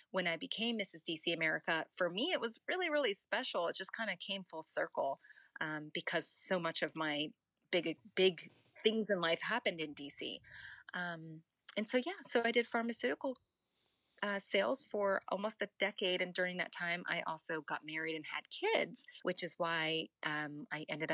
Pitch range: 165-205 Hz